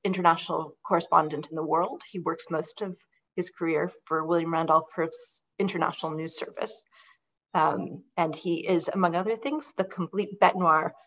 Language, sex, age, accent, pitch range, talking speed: English, female, 40-59, American, 170-225 Hz, 150 wpm